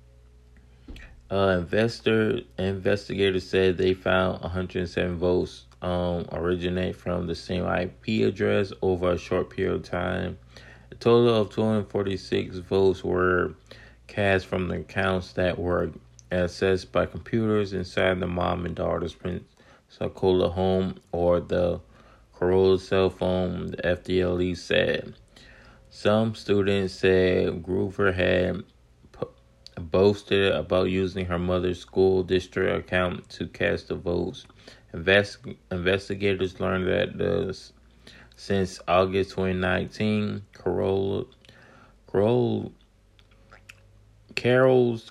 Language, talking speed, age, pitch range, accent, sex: English, 105 wpm, 30-49, 90-100 Hz, American, male